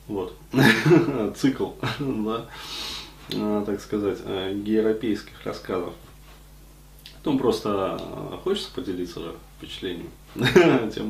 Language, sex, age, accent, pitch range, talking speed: Russian, male, 20-39, native, 100-125 Hz, 75 wpm